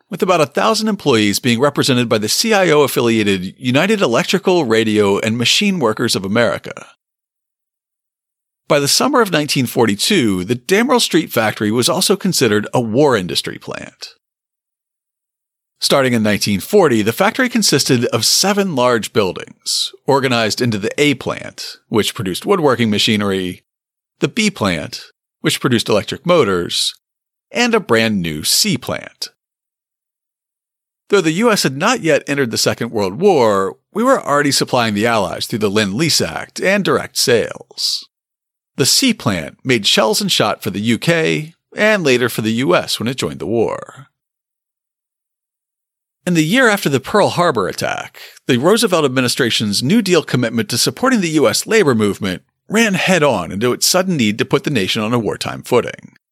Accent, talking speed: American, 150 wpm